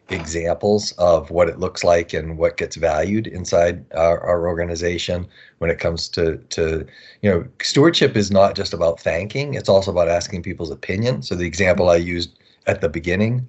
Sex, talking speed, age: male, 180 wpm, 40-59